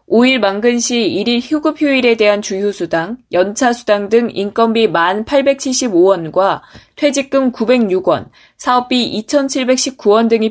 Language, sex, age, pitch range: Korean, female, 20-39, 195-255 Hz